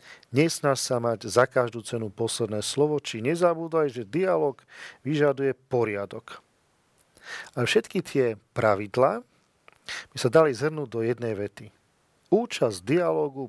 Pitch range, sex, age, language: 110-130 Hz, male, 40-59, Slovak